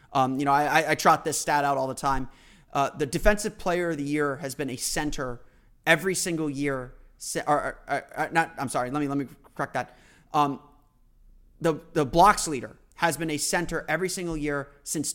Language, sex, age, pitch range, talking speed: English, male, 30-49, 135-155 Hz, 200 wpm